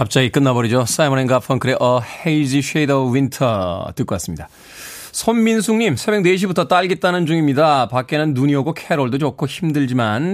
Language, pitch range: Korean, 125-180 Hz